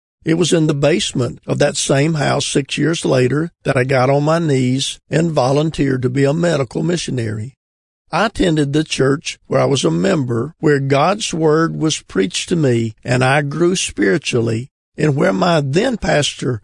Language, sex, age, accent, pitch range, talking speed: English, male, 50-69, American, 125-160 Hz, 175 wpm